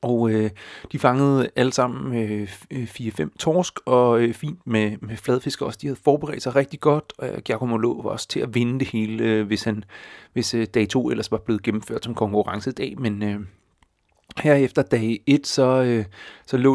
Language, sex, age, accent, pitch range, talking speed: Danish, male, 30-49, native, 115-145 Hz, 200 wpm